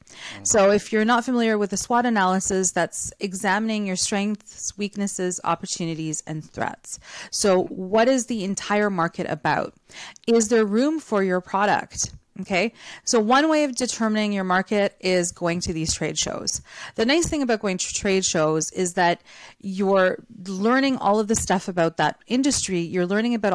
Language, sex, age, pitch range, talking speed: English, female, 30-49, 180-230 Hz, 170 wpm